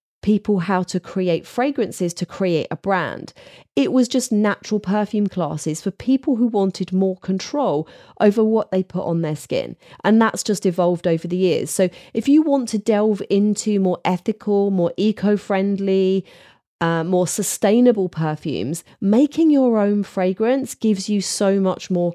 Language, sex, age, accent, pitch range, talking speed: English, female, 30-49, British, 160-205 Hz, 160 wpm